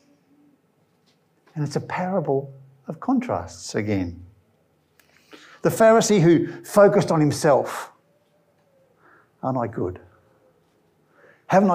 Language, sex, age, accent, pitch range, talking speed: English, male, 60-79, British, 95-130 Hz, 85 wpm